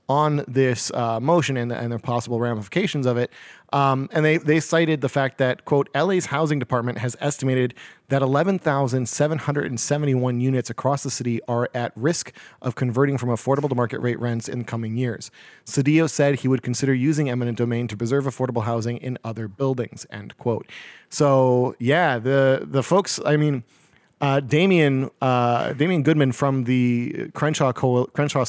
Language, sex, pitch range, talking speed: English, male, 120-140 Hz, 185 wpm